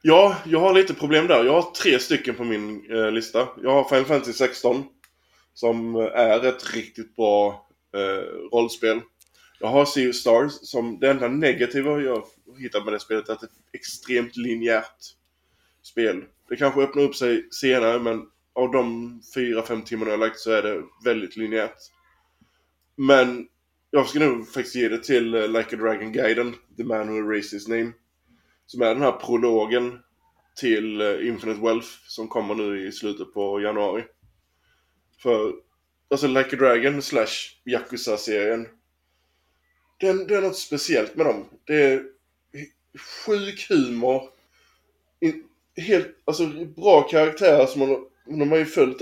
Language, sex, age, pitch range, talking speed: Swedish, male, 20-39, 110-140 Hz, 160 wpm